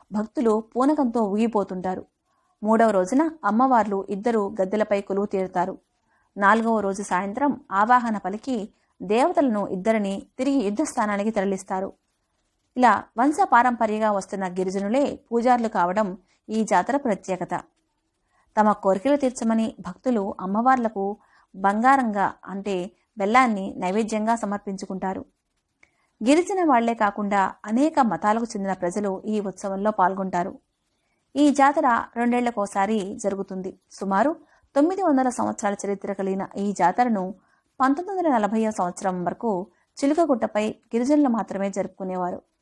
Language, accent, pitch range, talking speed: Telugu, native, 195-245 Hz, 100 wpm